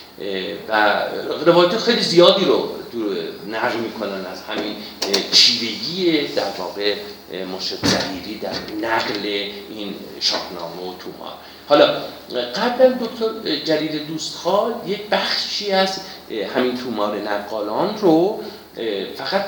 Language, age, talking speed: Persian, 50-69, 100 wpm